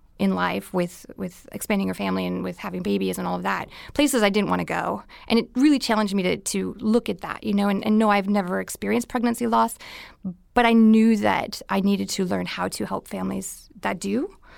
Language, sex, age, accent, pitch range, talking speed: English, female, 20-39, American, 200-255 Hz, 220 wpm